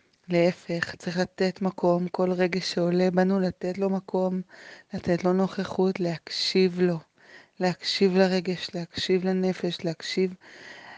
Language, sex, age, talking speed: Hebrew, female, 20-39, 115 wpm